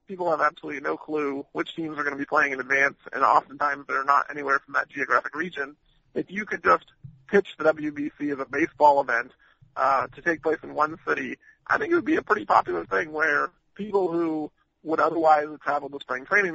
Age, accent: 40-59, American